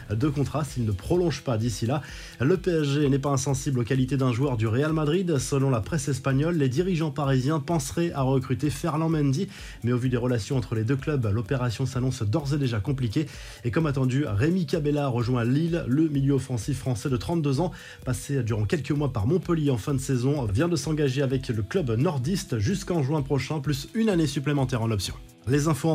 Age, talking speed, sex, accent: 20-39, 205 wpm, male, French